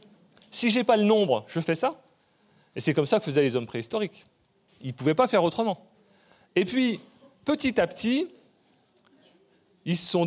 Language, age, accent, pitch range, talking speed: French, 30-49, French, 135-200 Hz, 185 wpm